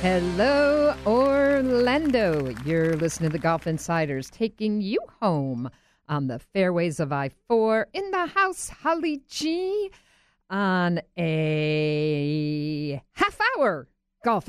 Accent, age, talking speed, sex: American, 50-69, 110 wpm, female